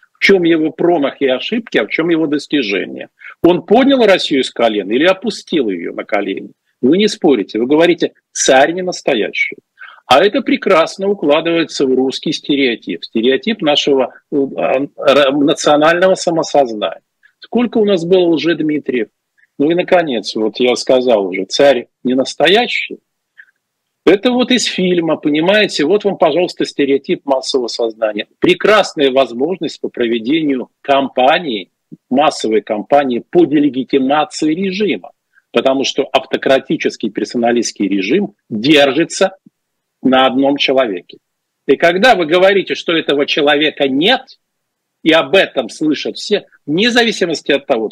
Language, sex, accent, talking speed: Russian, male, native, 130 wpm